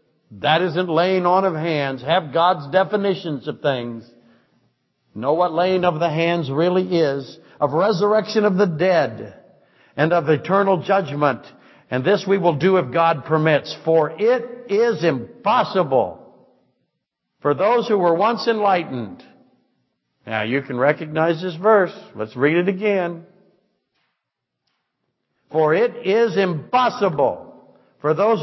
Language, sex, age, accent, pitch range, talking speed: English, male, 60-79, American, 160-220 Hz, 130 wpm